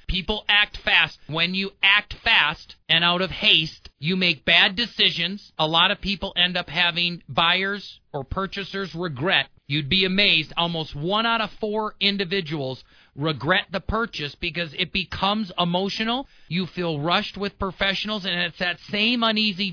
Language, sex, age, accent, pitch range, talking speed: English, male, 40-59, American, 170-200 Hz, 160 wpm